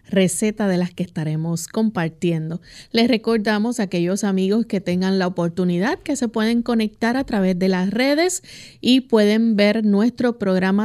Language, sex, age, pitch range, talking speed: Spanish, female, 30-49, 185-235 Hz, 160 wpm